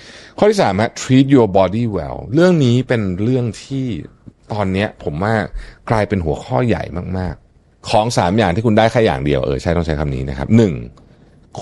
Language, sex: Thai, male